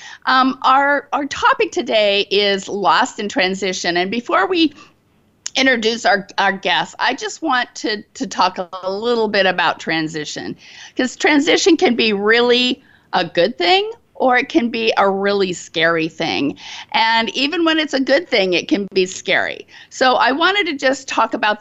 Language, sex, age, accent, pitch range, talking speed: English, female, 50-69, American, 200-275 Hz, 170 wpm